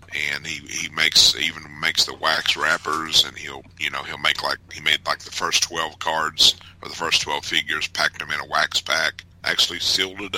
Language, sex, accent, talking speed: English, male, American, 215 wpm